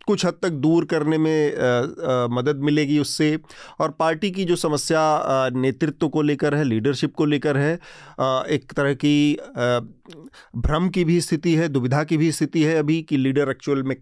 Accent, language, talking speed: native, Hindi, 185 wpm